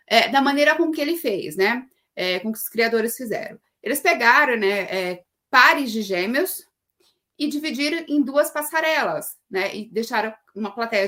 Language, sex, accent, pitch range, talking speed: Portuguese, female, Brazilian, 225-305 Hz, 170 wpm